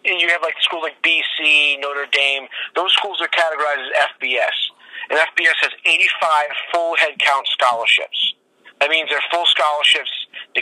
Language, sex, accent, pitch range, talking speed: English, male, American, 140-165 Hz, 160 wpm